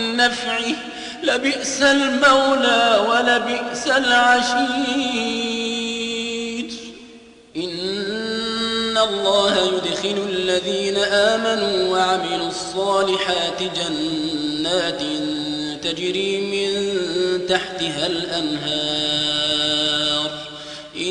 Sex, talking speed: male, 45 wpm